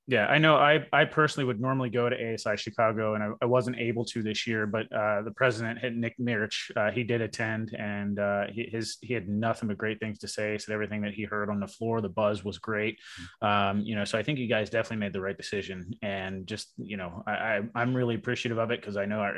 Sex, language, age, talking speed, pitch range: male, English, 20-39, 255 wpm, 100-120 Hz